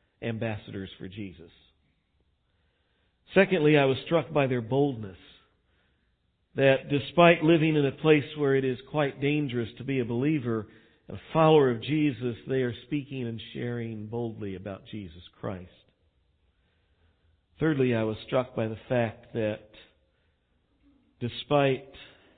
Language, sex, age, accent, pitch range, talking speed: English, male, 50-69, American, 95-125 Hz, 125 wpm